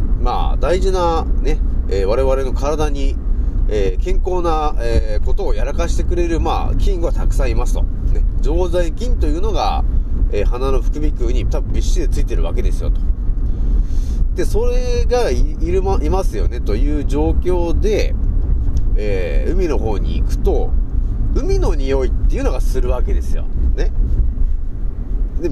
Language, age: Japanese, 30-49